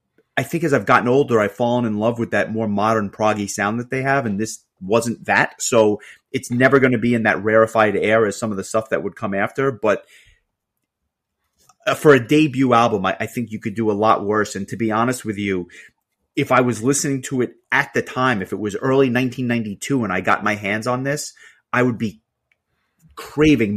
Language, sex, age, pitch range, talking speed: English, male, 30-49, 105-130 Hz, 215 wpm